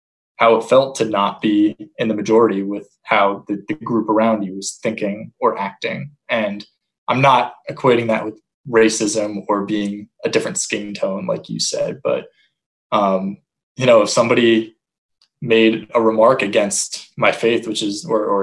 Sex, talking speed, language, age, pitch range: male, 170 wpm, English, 20-39, 105-120 Hz